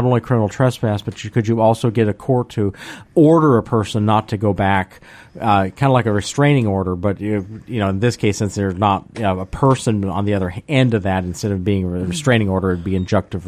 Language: English